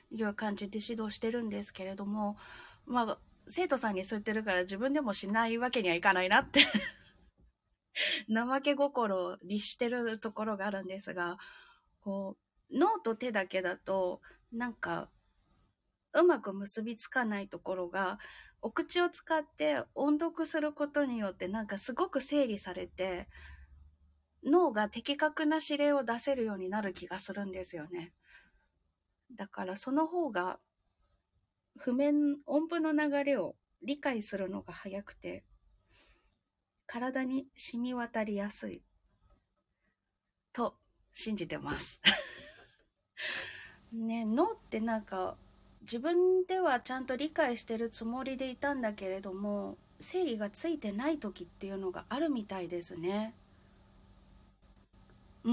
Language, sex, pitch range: Japanese, female, 190-280 Hz